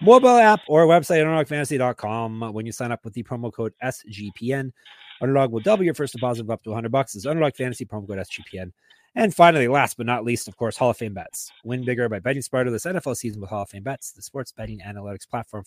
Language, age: English, 30-49